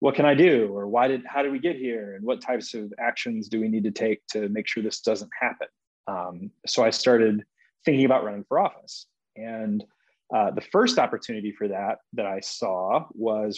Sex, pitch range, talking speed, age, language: male, 110-140 Hz, 210 wpm, 30-49, English